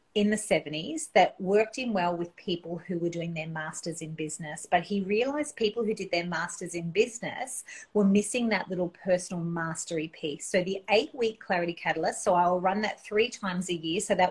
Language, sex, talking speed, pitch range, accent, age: English, female, 200 wpm, 170-220 Hz, Australian, 30-49